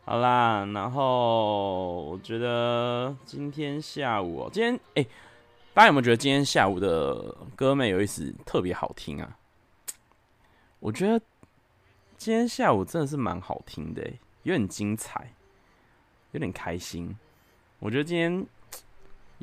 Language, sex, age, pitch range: Chinese, male, 20-39, 100-140 Hz